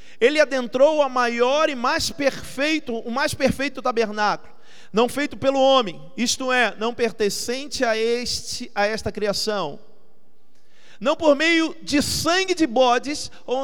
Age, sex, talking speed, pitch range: 40-59, male, 140 wpm, 235-300 Hz